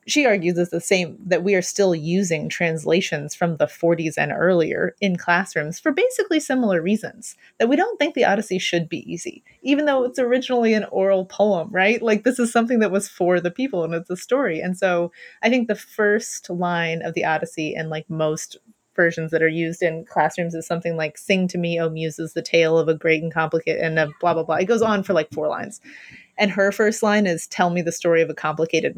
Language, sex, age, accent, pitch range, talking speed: English, female, 30-49, American, 165-200 Hz, 230 wpm